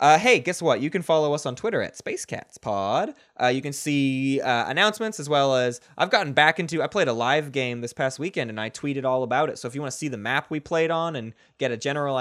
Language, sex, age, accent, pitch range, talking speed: English, male, 20-39, American, 120-160 Hz, 265 wpm